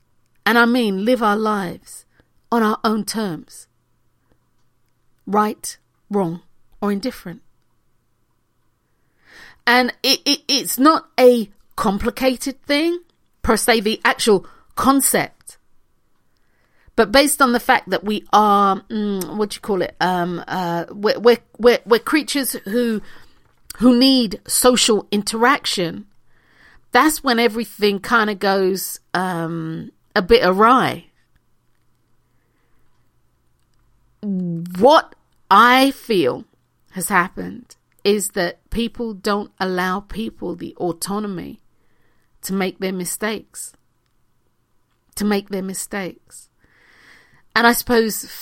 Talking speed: 105 wpm